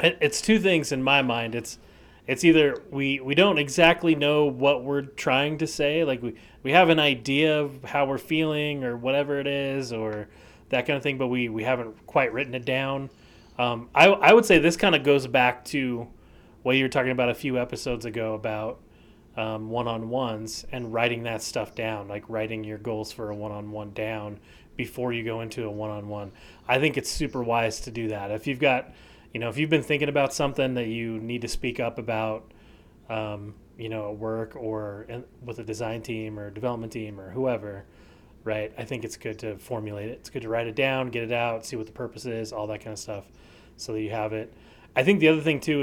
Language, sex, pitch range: English, male, 110-140 Hz